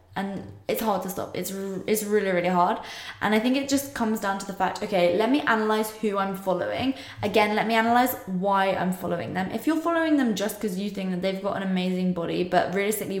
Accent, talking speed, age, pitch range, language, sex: British, 230 wpm, 10-29, 180-215 Hz, French, female